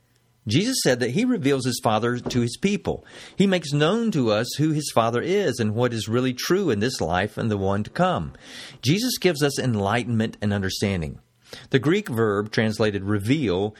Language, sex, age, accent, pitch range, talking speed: English, male, 50-69, American, 105-135 Hz, 185 wpm